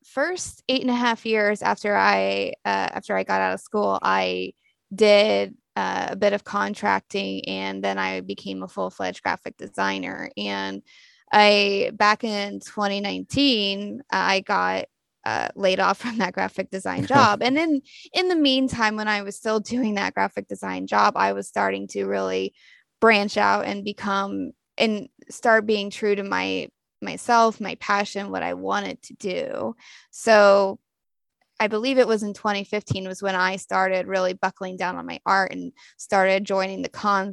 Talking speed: 170 wpm